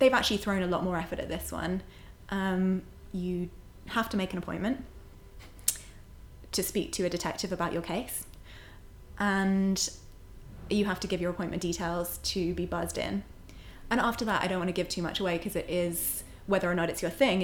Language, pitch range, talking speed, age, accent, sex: English, 165-190 Hz, 195 wpm, 20-39, British, female